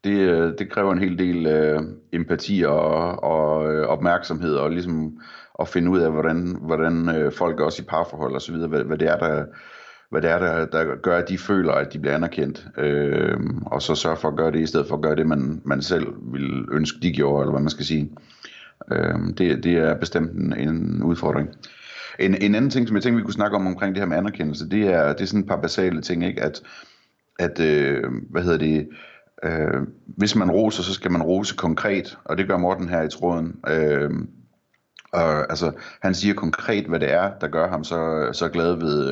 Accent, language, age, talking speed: native, Danish, 30-49, 220 wpm